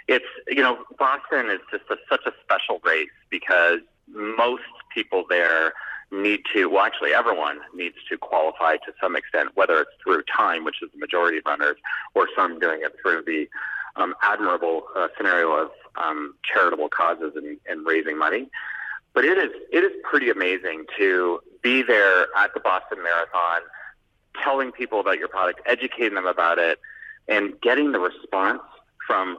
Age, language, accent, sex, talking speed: 30-49, English, American, male, 165 wpm